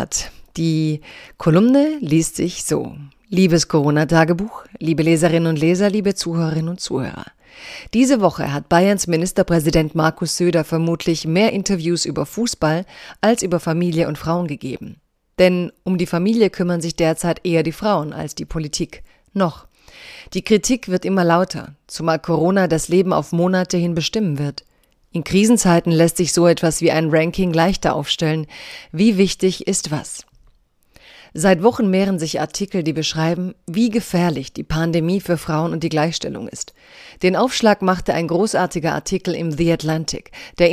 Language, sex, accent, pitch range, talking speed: German, female, German, 165-190 Hz, 150 wpm